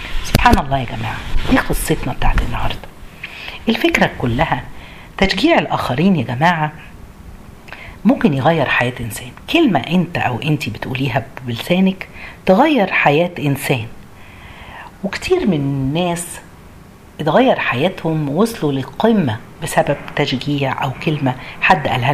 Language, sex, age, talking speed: Arabic, female, 50-69, 110 wpm